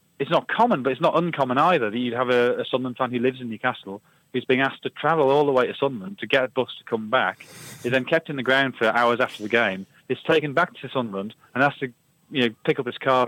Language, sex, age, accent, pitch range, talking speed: English, male, 30-49, British, 110-130 Hz, 275 wpm